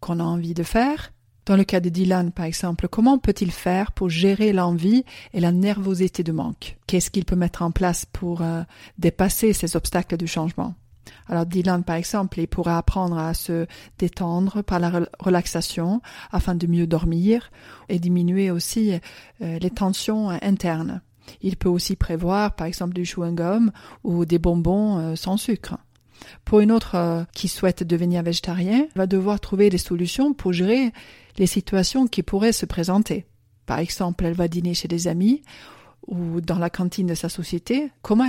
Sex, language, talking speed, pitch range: female, French, 175 wpm, 175-205 Hz